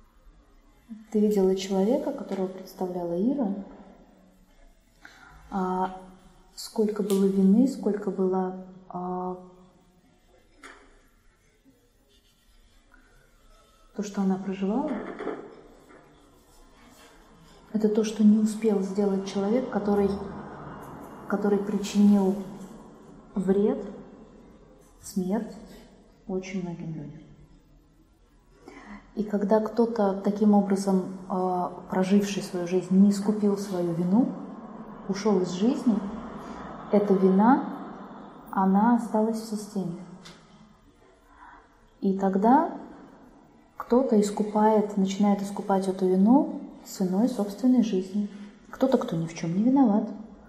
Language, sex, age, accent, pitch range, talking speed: Russian, female, 20-39, native, 190-225 Hz, 80 wpm